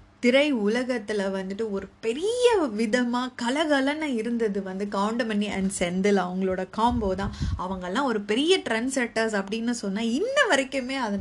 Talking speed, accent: 125 wpm, native